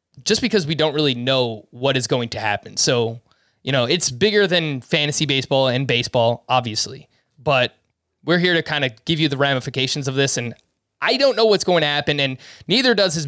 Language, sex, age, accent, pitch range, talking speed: English, male, 20-39, American, 130-160 Hz, 210 wpm